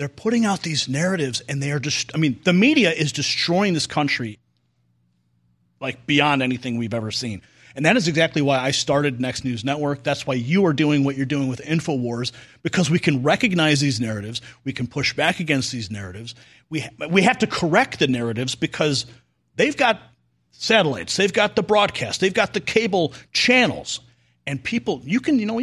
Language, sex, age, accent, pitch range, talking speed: English, male, 40-59, American, 125-180 Hz, 195 wpm